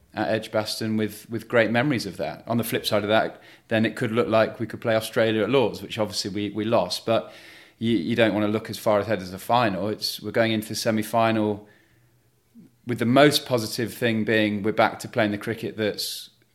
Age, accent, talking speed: 30-49, British, 225 wpm